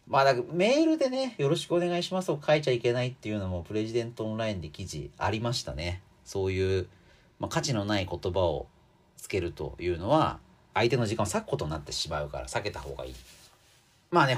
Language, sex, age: Japanese, male, 40-59